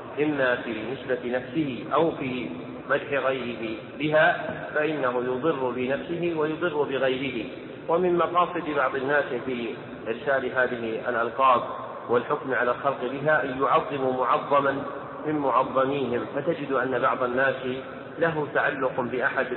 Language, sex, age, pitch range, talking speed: Arabic, male, 40-59, 125-150 Hz, 115 wpm